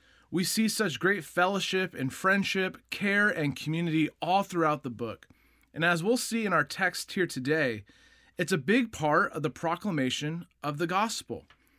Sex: male